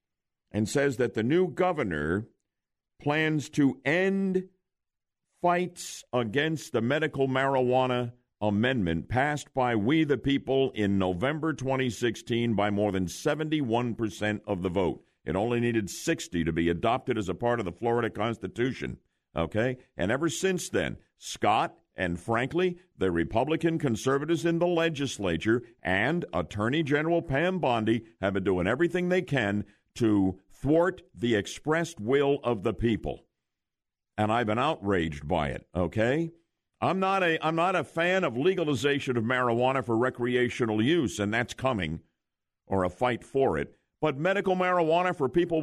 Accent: American